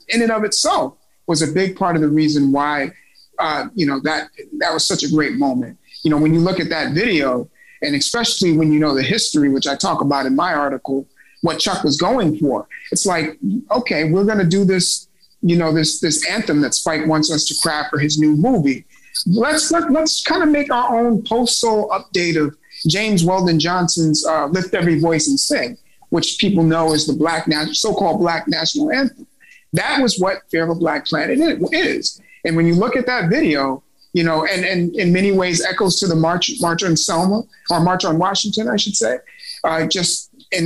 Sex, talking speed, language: male, 215 wpm, English